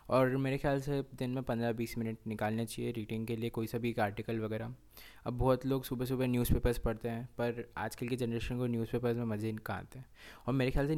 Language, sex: Hindi, male